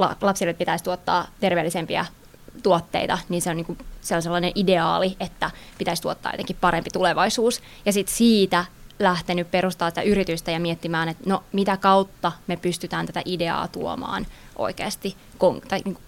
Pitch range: 170-195 Hz